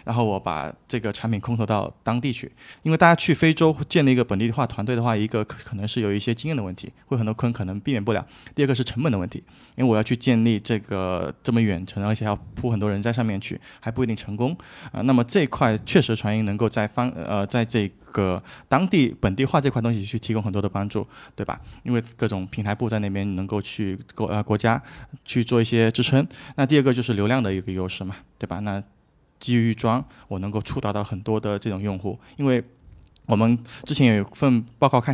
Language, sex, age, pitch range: Chinese, male, 20-39, 105-130 Hz